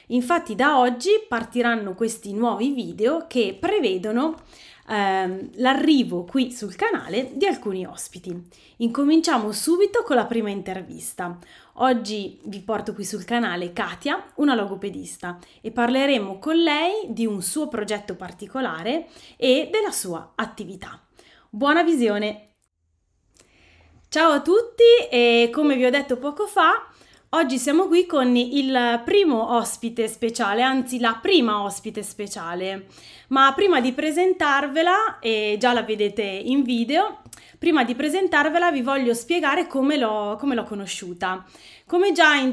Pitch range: 205-275 Hz